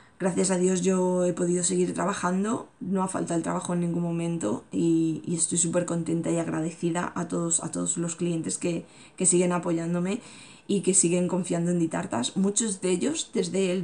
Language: Spanish